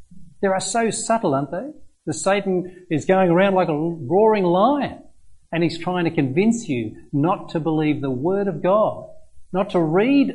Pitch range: 135-195 Hz